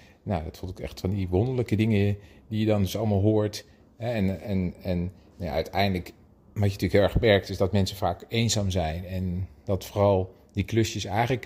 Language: Dutch